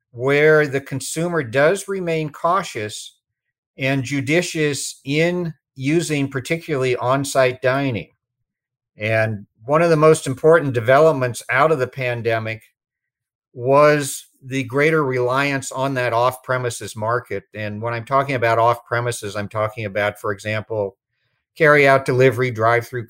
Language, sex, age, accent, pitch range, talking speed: English, male, 50-69, American, 120-145 Hz, 120 wpm